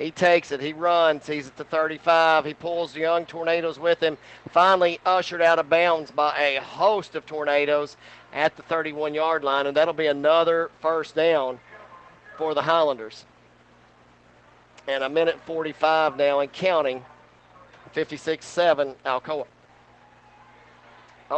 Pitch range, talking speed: 130-160 Hz, 140 wpm